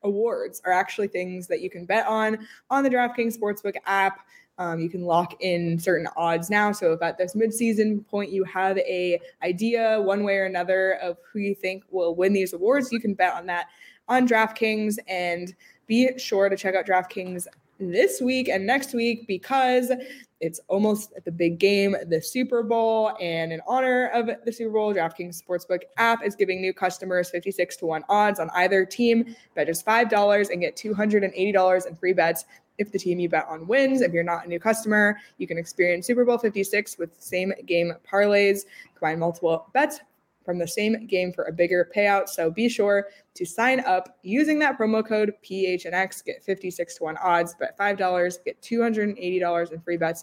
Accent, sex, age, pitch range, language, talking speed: American, female, 20-39, 175-220 Hz, English, 190 wpm